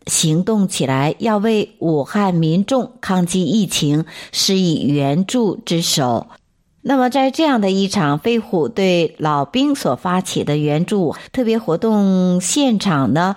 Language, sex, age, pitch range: Chinese, female, 50-69, 160-235 Hz